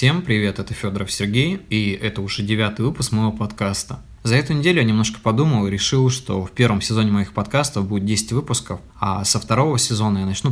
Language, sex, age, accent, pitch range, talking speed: Russian, male, 20-39, native, 100-115 Hz, 200 wpm